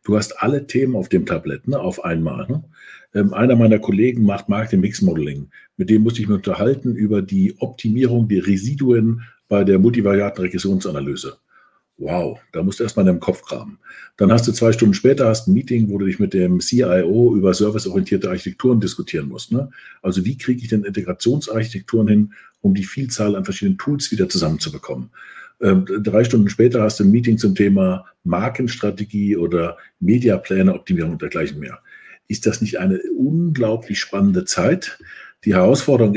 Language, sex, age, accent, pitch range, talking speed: German, male, 60-79, German, 100-125 Hz, 170 wpm